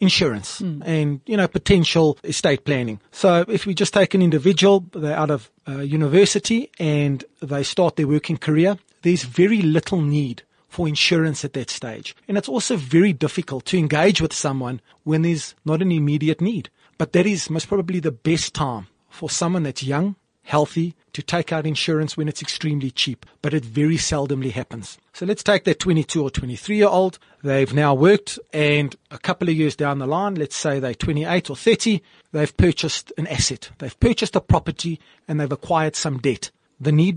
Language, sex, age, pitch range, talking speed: English, male, 30-49, 145-180 Hz, 185 wpm